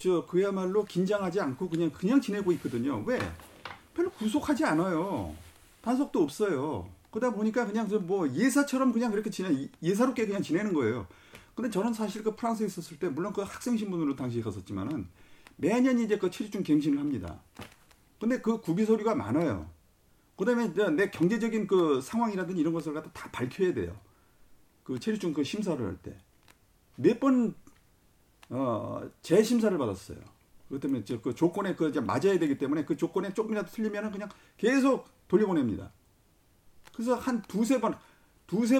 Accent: native